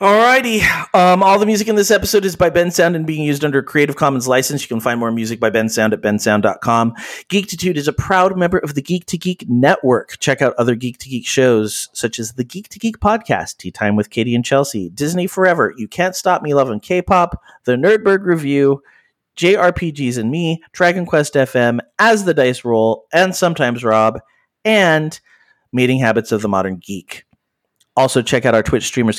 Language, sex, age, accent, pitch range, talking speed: English, male, 30-49, American, 115-180 Hz, 195 wpm